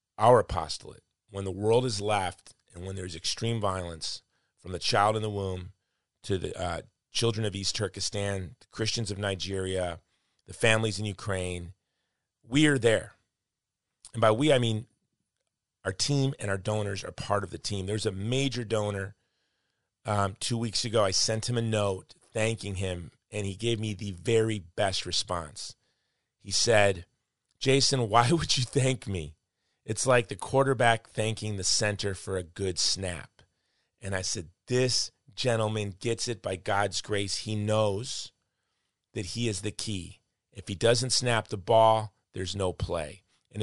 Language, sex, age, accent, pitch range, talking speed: English, male, 30-49, American, 95-115 Hz, 165 wpm